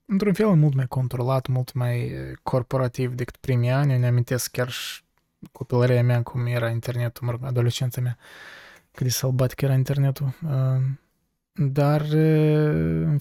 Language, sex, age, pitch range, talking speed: Romanian, male, 20-39, 125-145 Hz, 135 wpm